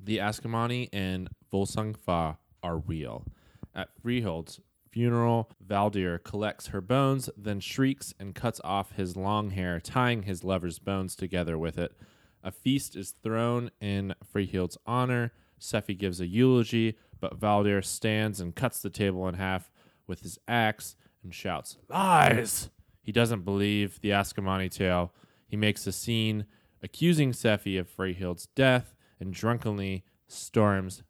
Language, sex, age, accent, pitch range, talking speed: English, male, 20-39, American, 95-110 Hz, 140 wpm